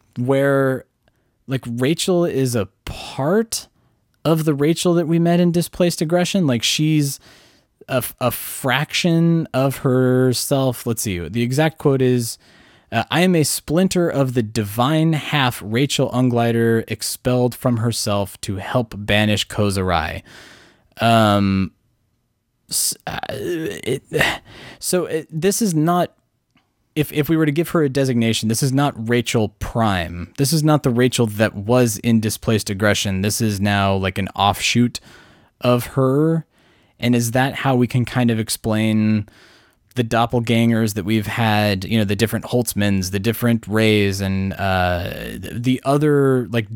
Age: 20-39